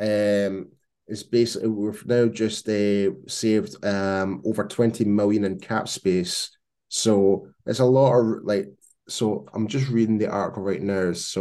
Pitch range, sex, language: 95-115 Hz, male, English